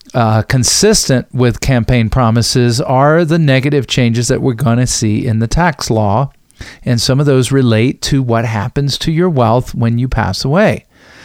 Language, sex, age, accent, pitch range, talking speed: English, male, 50-69, American, 120-155 Hz, 170 wpm